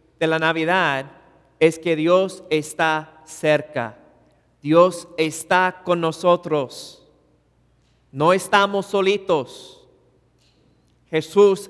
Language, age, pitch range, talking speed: English, 40-59, 140-185 Hz, 80 wpm